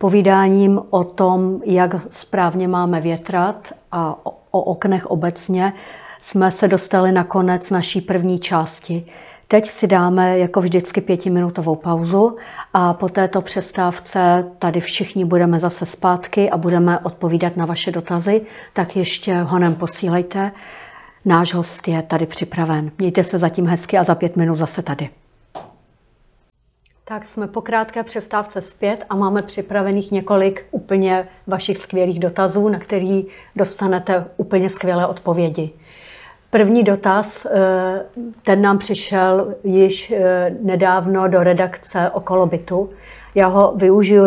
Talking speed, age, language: 125 wpm, 50-69, Czech